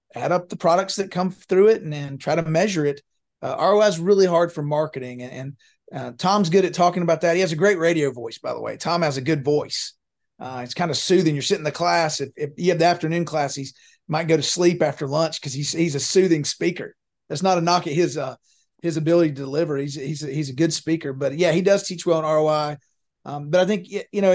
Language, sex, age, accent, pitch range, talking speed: English, male, 30-49, American, 145-175 Hz, 265 wpm